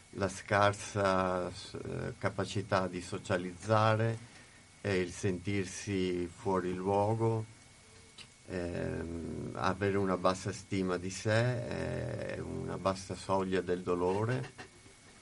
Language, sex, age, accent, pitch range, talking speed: Italian, male, 50-69, native, 95-115 Hz, 95 wpm